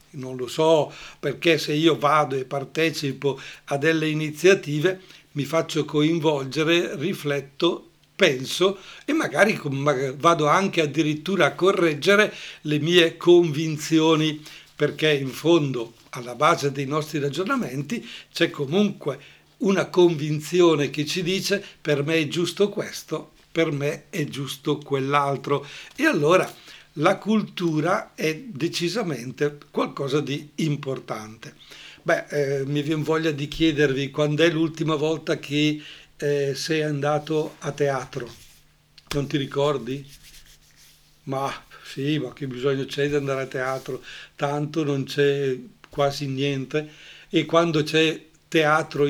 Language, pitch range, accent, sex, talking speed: Italian, 140-165 Hz, native, male, 120 wpm